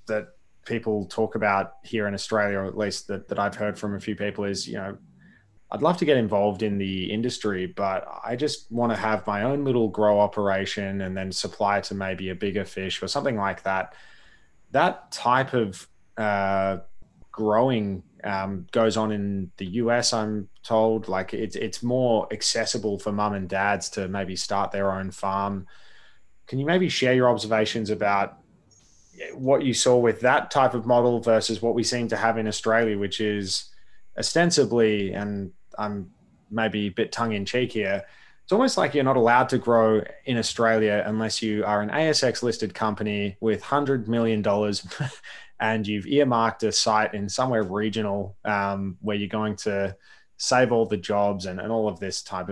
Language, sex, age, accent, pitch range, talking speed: English, male, 20-39, Australian, 100-115 Hz, 180 wpm